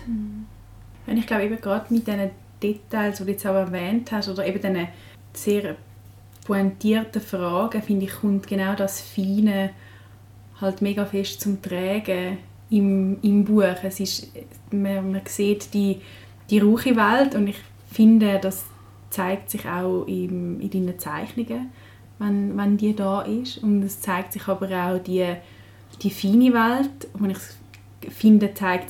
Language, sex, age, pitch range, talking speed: English, female, 20-39, 175-210 Hz, 145 wpm